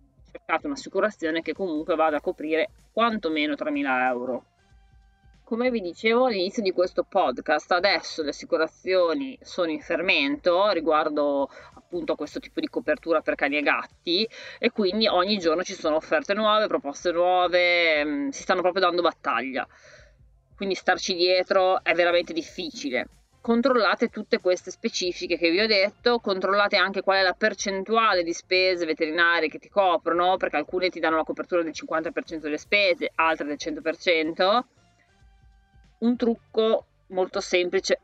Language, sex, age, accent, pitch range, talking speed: Italian, female, 30-49, native, 160-200 Hz, 140 wpm